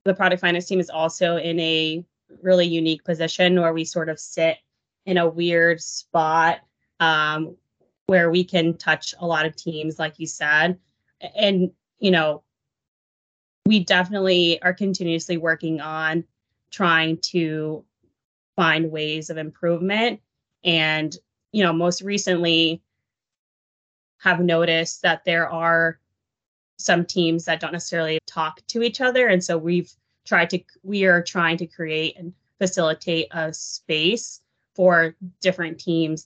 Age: 20-39